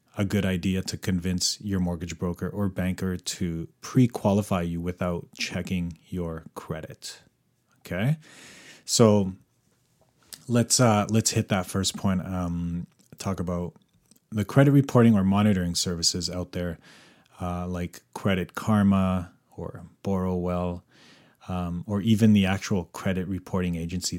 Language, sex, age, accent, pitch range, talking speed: English, male, 30-49, Canadian, 85-105 Hz, 125 wpm